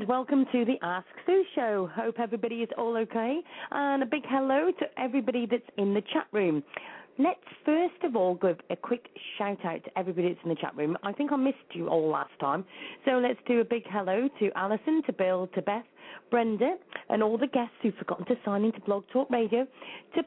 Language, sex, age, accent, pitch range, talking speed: English, female, 40-59, British, 195-270 Hz, 215 wpm